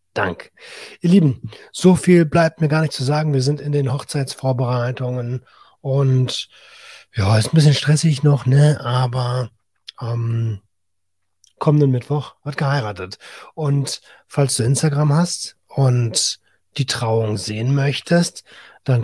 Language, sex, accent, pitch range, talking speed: German, male, German, 115-145 Hz, 130 wpm